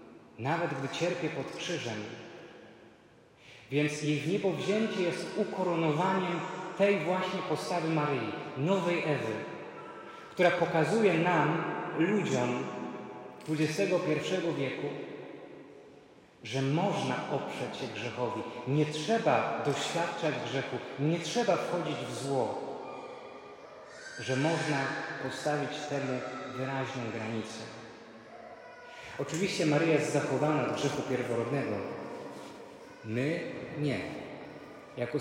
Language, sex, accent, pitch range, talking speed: Polish, male, native, 130-170 Hz, 90 wpm